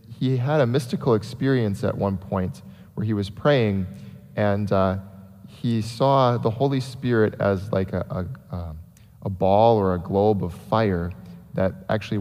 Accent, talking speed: American, 155 wpm